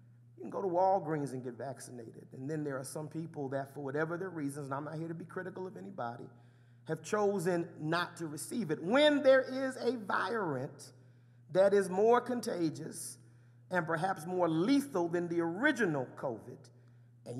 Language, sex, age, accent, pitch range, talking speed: English, male, 40-59, American, 125-205 Hz, 180 wpm